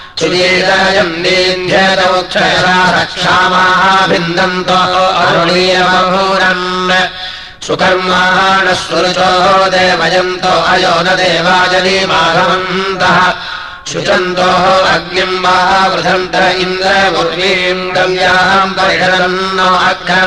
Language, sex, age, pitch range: Russian, male, 30-49, 180-185 Hz